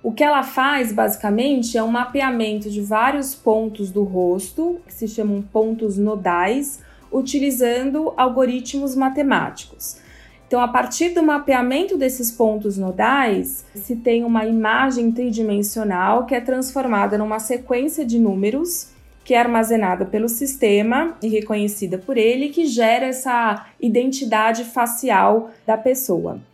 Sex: female